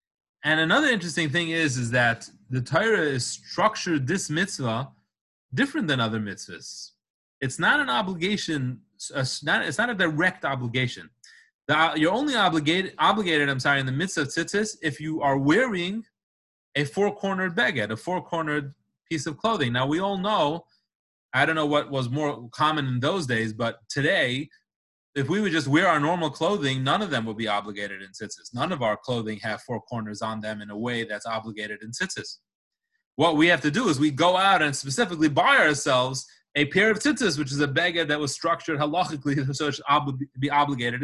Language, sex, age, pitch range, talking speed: English, male, 30-49, 130-180 Hz, 185 wpm